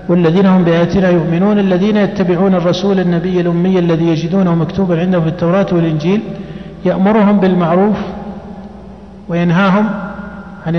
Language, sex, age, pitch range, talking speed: Arabic, male, 50-69, 170-200 Hz, 110 wpm